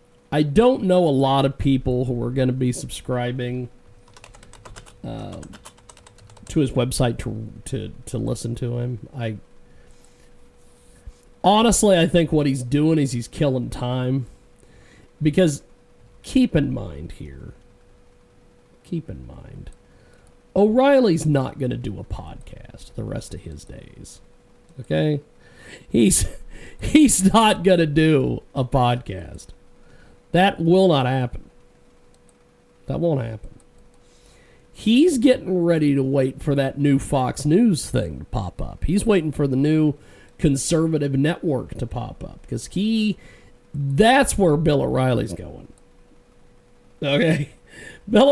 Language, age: English, 50-69